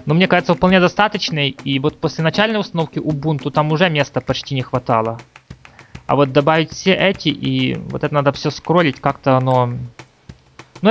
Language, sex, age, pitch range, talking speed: Russian, male, 20-39, 135-180 Hz, 170 wpm